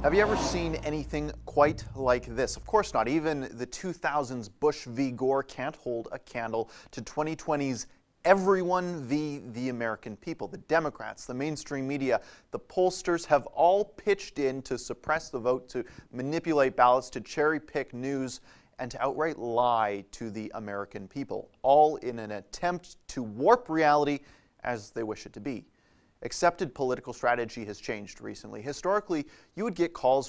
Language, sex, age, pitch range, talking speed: English, male, 30-49, 120-155 Hz, 160 wpm